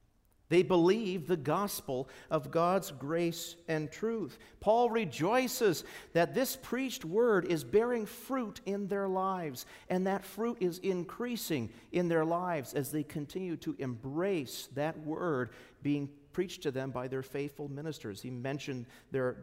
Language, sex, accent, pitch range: English, male, American, 130-195 Hz